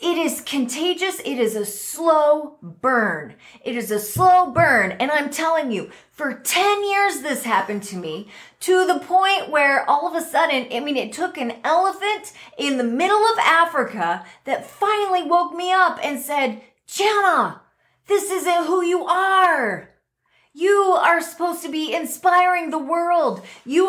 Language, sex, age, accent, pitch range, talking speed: English, female, 30-49, American, 240-360 Hz, 165 wpm